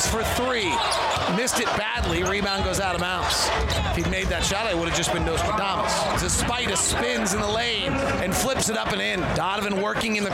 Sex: male